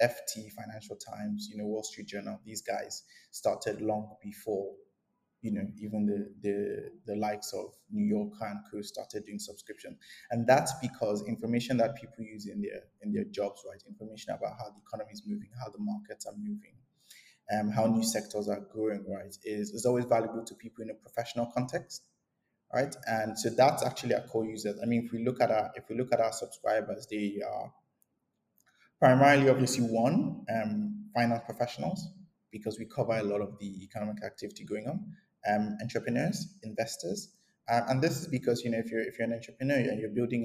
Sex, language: male, English